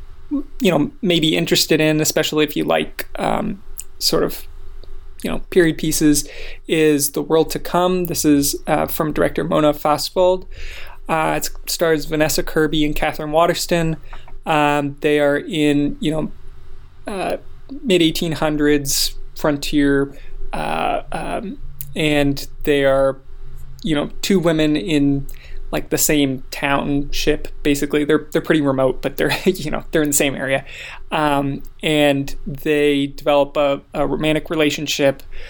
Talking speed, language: 140 wpm, English